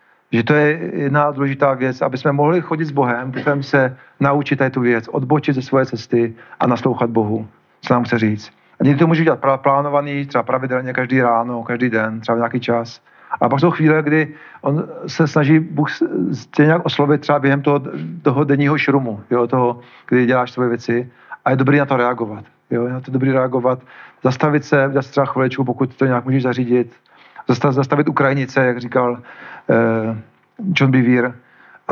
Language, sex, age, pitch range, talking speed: Czech, male, 40-59, 125-145 Hz, 180 wpm